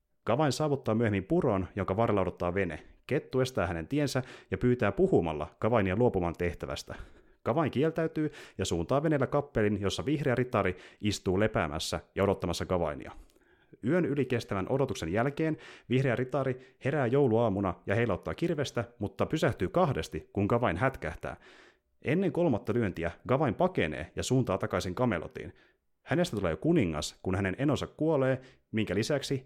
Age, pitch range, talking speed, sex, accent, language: 30-49, 95-130 Hz, 135 wpm, male, native, Finnish